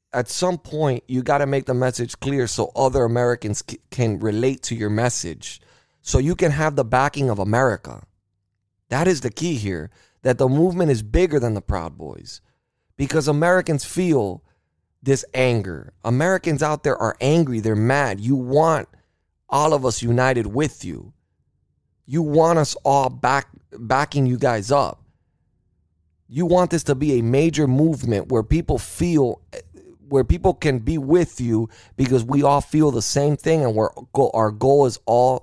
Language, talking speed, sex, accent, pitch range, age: English, 165 wpm, male, American, 120-150 Hz, 30-49